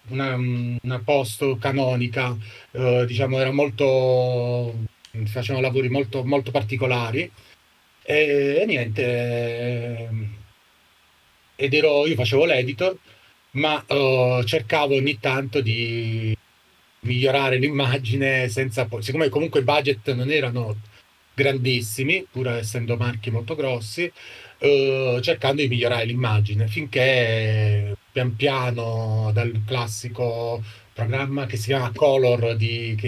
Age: 30-49